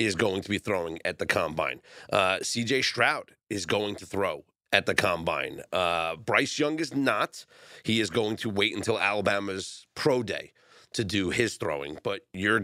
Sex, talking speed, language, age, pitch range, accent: male, 180 wpm, English, 30-49, 100-135 Hz, American